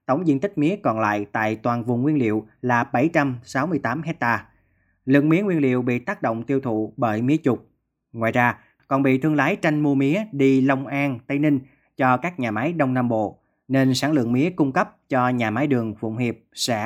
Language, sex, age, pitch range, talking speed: Vietnamese, male, 20-39, 115-145 Hz, 215 wpm